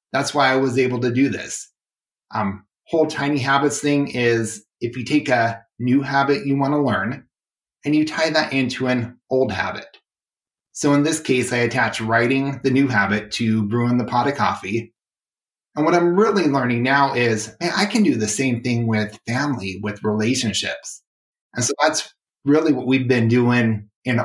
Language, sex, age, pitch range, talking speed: English, male, 30-49, 115-140 Hz, 185 wpm